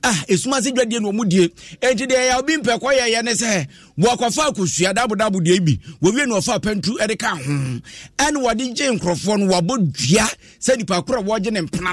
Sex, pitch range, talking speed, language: male, 170-230 Hz, 180 wpm, English